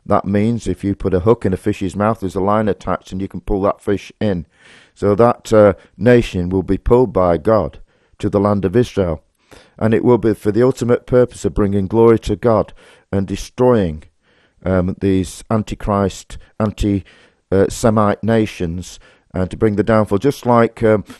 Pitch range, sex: 90-110 Hz, male